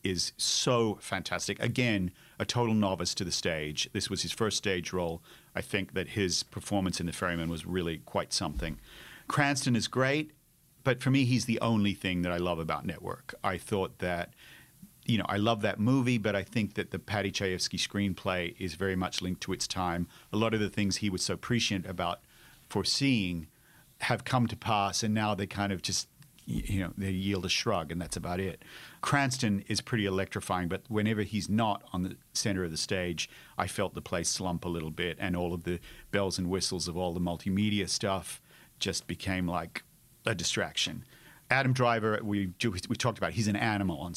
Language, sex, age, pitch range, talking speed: English, male, 40-59, 90-115 Hz, 200 wpm